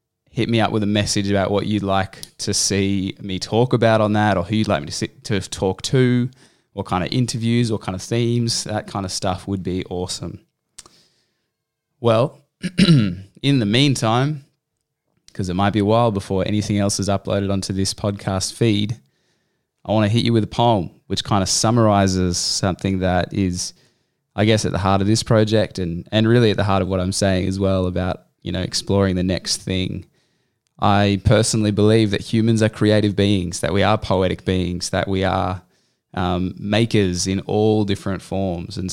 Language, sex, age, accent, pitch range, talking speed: English, male, 20-39, Australian, 95-110 Hz, 195 wpm